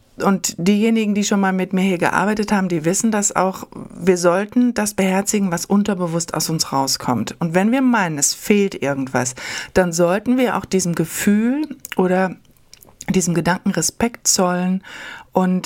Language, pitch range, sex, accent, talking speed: German, 170-215 Hz, female, German, 160 wpm